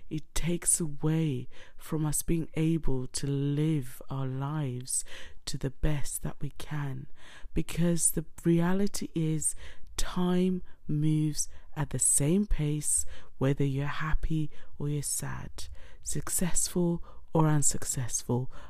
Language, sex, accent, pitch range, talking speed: English, female, British, 130-160 Hz, 115 wpm